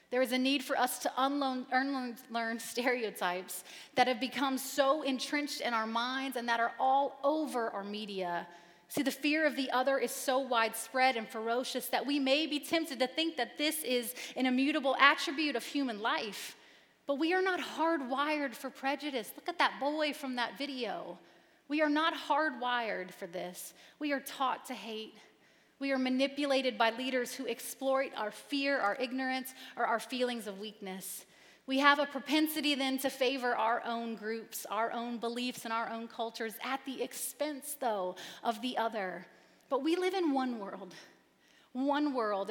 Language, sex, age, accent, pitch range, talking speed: English, female, 30-49, American, 230-280 Hz, 180 wpm